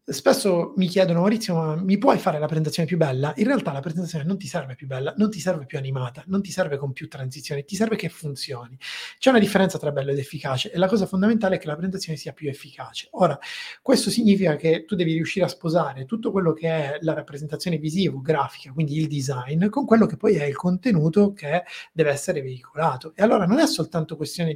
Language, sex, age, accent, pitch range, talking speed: Italian, male, 30-49, native, 150-195 Hz, 220 wpm